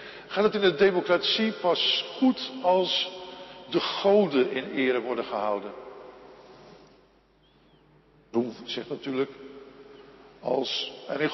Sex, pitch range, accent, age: male, 150-210 Hz, Dutch, 50-69